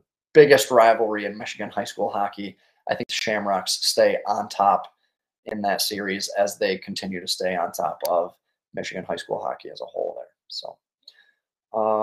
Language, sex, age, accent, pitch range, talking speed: English, male, 30-49, American, 125-175 Hz, 175 wpm